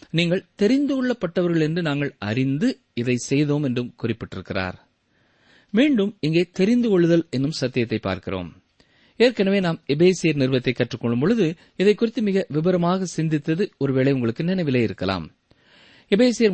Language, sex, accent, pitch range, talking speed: Tamil, male, native, 125-195 Hz, 120 wpm